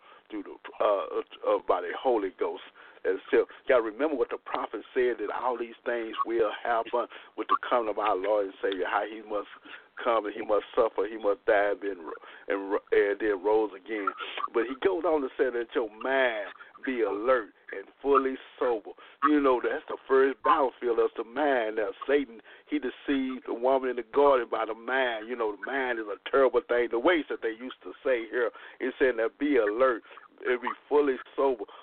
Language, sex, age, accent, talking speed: English, male, 50-69, American, 190 wpm